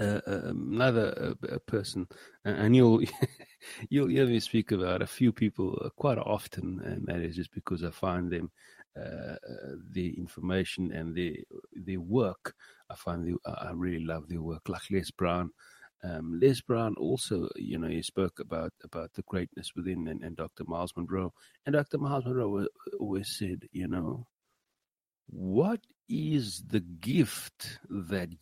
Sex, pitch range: male, 90-145 Hz